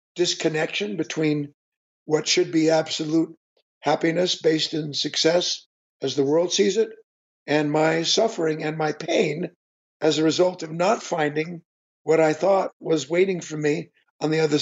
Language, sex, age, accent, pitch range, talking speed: English, male, 60-79, American, 155-185 Hz, 150 wpm